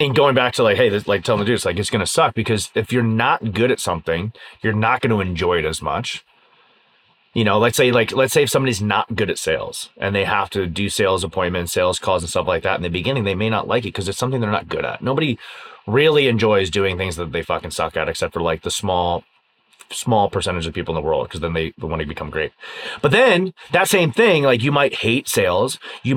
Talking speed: 260 wpm